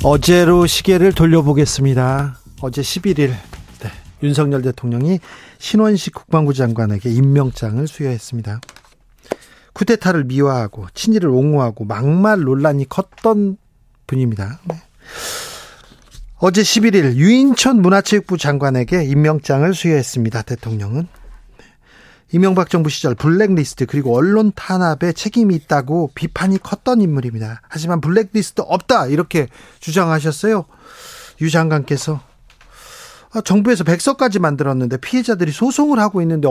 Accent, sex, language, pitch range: native, male, Korean, 135-190 Hz